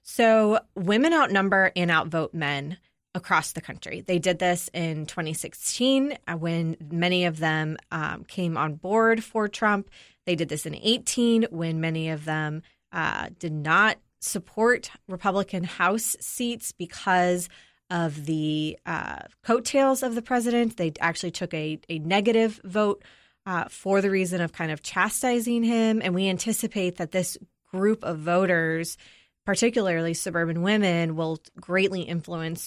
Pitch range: 165-215 Hz